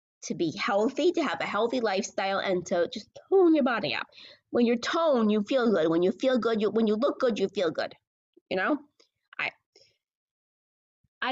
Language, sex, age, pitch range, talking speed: English, female, 20-39, 195-280 Hz, 195 wpm